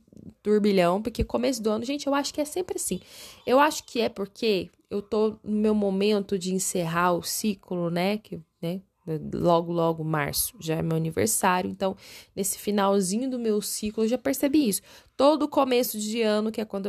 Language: Portuguese